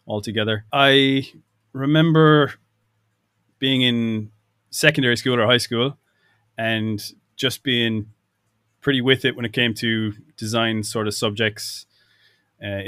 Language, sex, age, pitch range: English, male, 20-39, 105-120 Hz